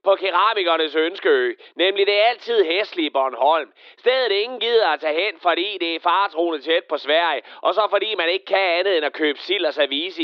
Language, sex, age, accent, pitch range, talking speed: Danish, male, 30-49, native, 185-305 Hz, 195 wpm